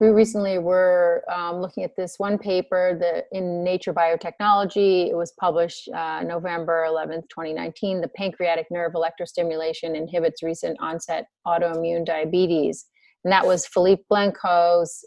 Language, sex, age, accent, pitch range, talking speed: English, female, 30-49, American, 170-200 Hz, 135 wpm